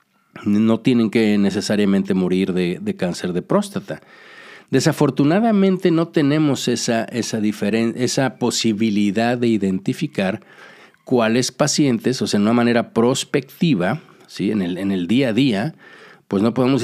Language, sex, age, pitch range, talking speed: Spanish, male, 50-69, 110-145 Hz, 125 wpm